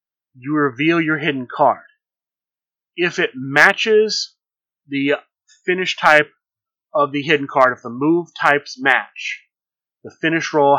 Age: 30-49